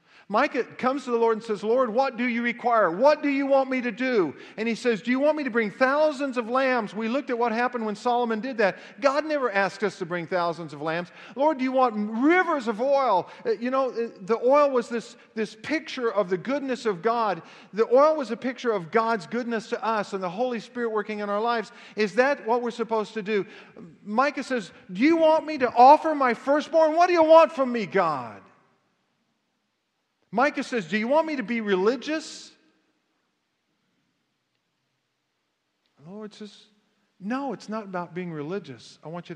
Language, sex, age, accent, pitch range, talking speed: English, male, 50-69, American, 170-255 Hz, 200 wpm